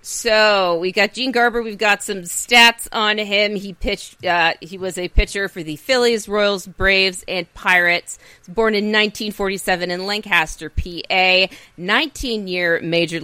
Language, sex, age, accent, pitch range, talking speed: English, female, 40-59, American, 180-235 Hz, 155 wpm